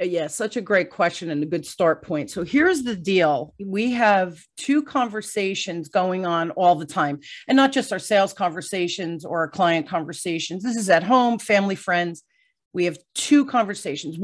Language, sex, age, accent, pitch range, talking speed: English, female, 40-59, American, 165-215 Hz, 180 wpm